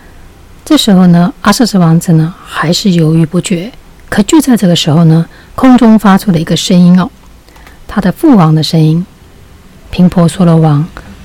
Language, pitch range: Chinese, 165-205 Hz